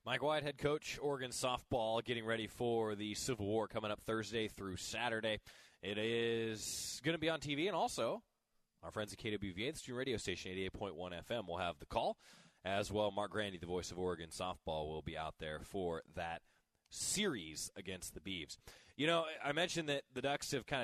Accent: American